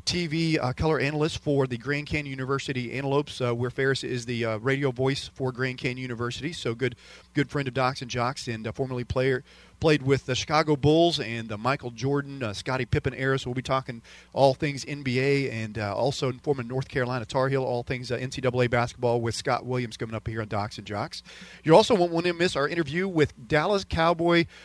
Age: 40-59